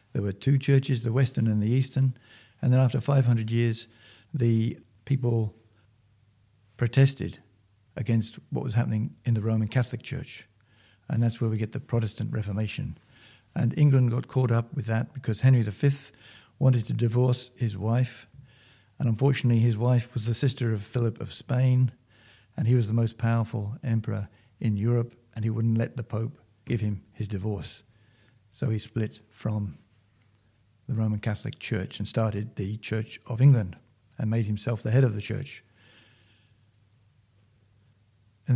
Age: 50-69